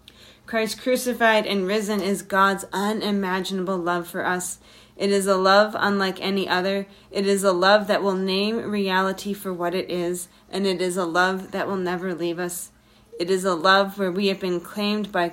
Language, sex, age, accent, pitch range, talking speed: English, female, 30-49, American, 175-205 Hz, 190 wpm